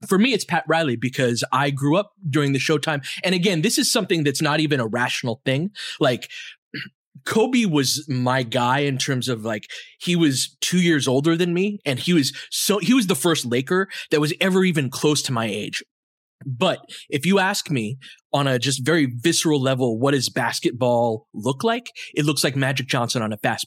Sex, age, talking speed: male, 20-39, 205 wpm